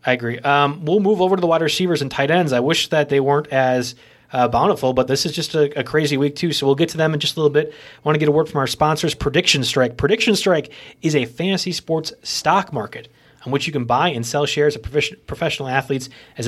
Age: 30-49